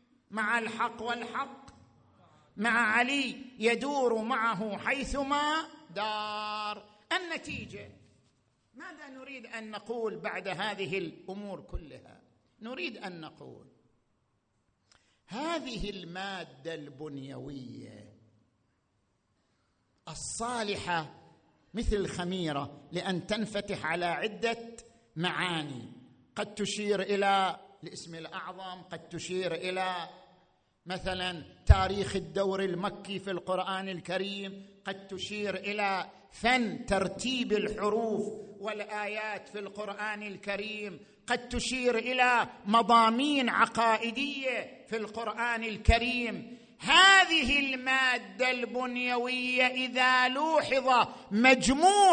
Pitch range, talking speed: 190-250 Hz, 80 wpm